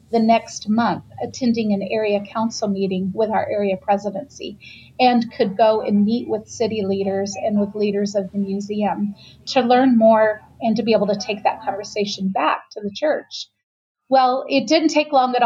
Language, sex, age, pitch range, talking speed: English, female, 30-49, 210-240 Hz, 185 wpm